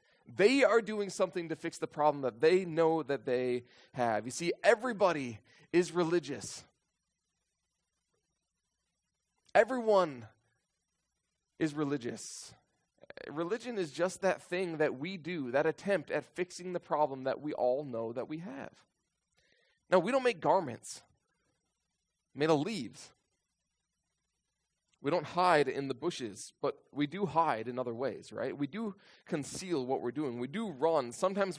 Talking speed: 140 wpm